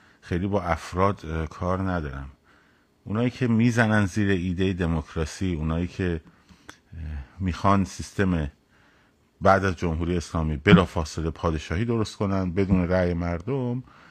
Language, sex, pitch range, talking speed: Persian, male, 90-120 Hz, 110 wpm